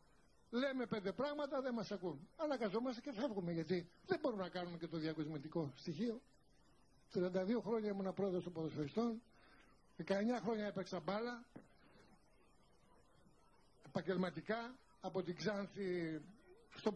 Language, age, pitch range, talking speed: Greek, 60-79, 175-235 Hz, 115 wpm